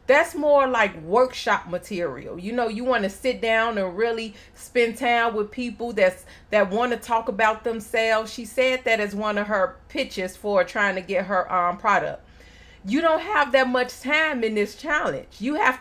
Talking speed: 195 wpm